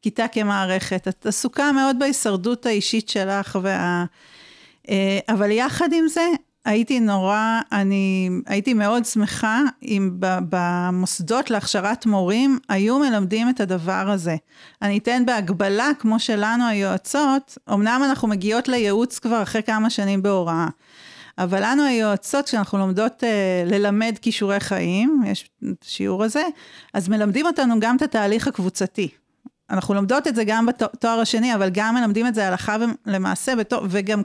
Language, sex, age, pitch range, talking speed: Hebrew, female, 40-59, 195-245 Hz, 135 wpm